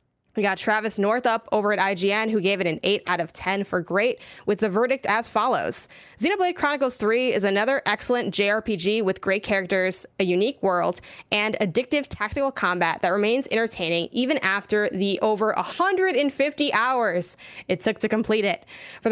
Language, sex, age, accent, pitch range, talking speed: English, female, 20-39, American, 200-255 Hz, 175 wpm